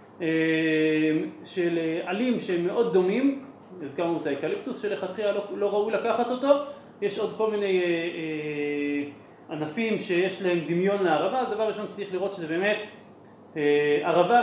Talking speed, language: 125 wpm, Hebrew